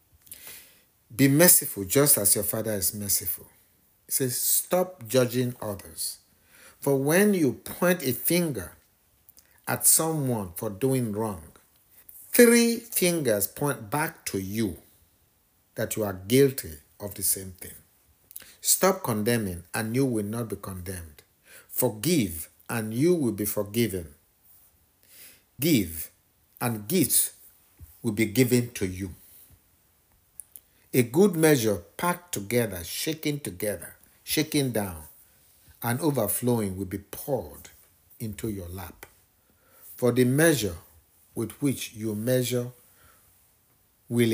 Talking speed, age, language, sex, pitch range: 115 wpm, 50-69, English, male, 95-125 Hz